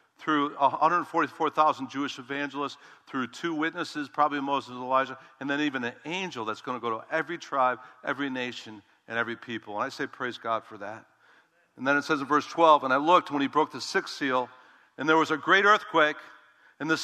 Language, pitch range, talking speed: English, 135-170 Hz, 210 wpm